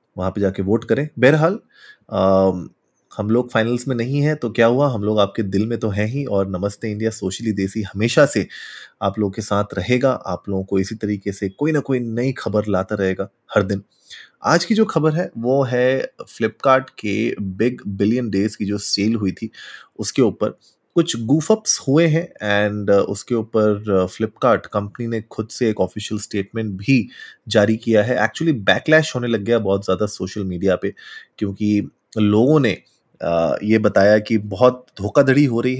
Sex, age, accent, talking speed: male, 30-49, native, 180 wpm